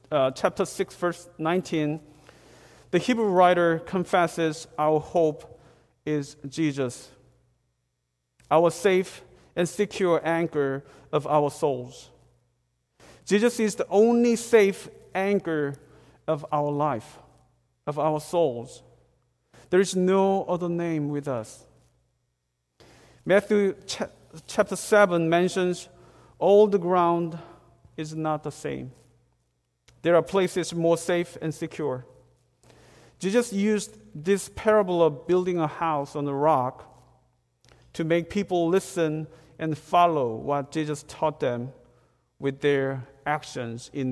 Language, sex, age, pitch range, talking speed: English, male, 40-59, 130-175 Hz, 115 wpm